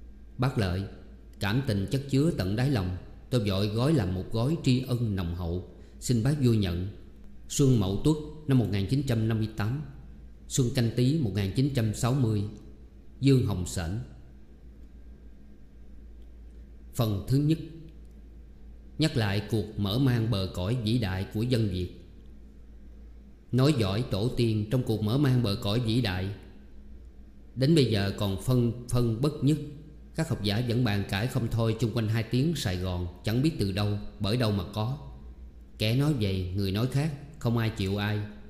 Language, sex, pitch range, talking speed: Vietnamese, male, 95-125 Hz, 175 wpm